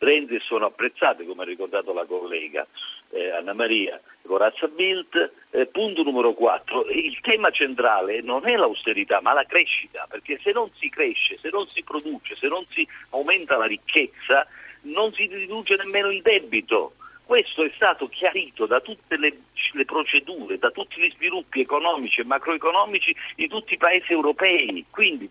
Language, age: Italian, 50-69